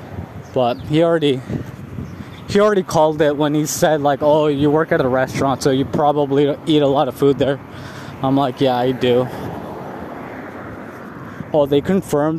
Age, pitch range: 20-39, 125-155 Hz